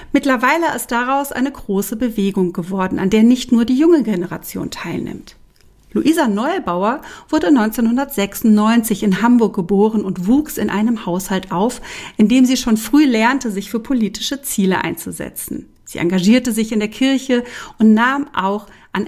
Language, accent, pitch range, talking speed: German, German, 195-250 Hz, 155 wpm